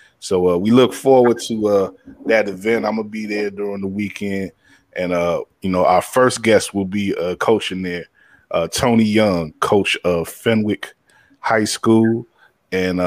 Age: 20-39